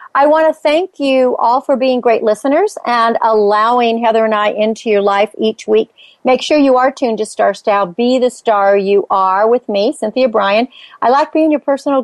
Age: 50-69